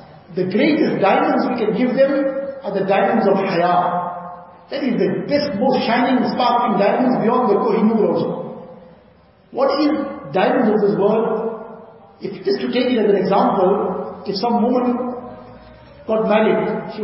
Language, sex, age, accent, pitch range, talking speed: English, male, 50-69, Indian, 200-245 Hz, 155 wpm